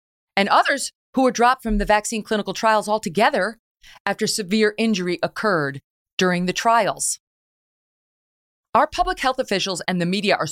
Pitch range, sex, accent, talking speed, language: 175-235 Hz, female, American, 150 wpm, English